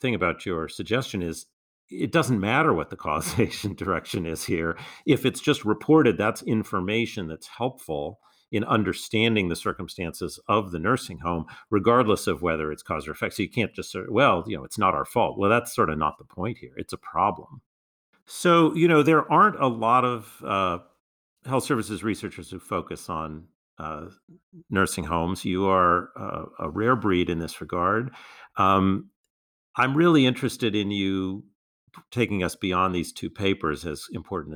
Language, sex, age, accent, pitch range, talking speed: English, male, 50-69, American, 85-110 Hz, 175 wpm